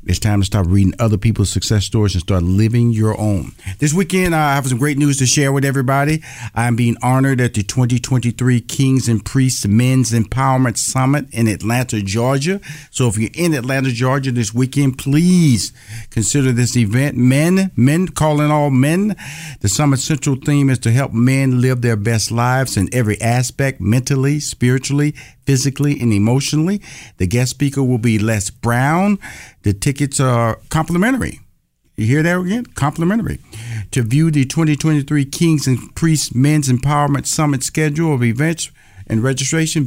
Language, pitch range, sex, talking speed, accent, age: English, 110-145 Hz, male, 165 wpm, American, 50-69